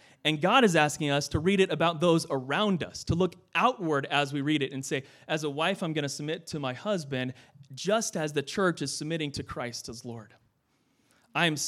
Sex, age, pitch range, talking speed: male, 30-49, 140-180 Hz, 215 wpm